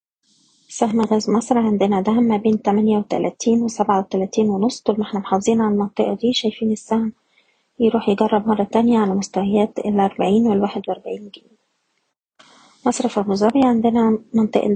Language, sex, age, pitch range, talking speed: Arabic, female, 20-39, 205-230 Hz, 140 wpm